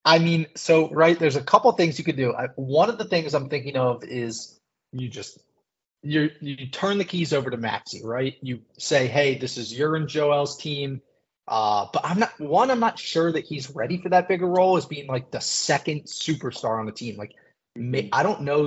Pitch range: 125-155 Hz